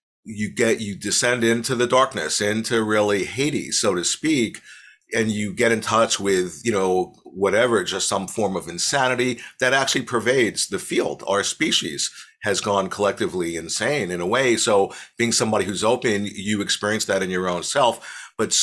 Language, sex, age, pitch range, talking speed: English, male, 50-69, 95-120 Hz, 175 wpm